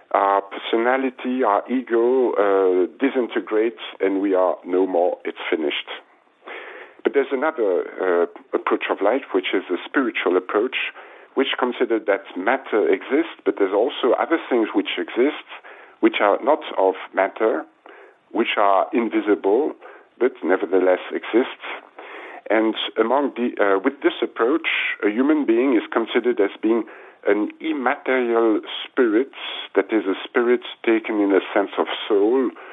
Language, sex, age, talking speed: English, male, 50-69, 140 wpm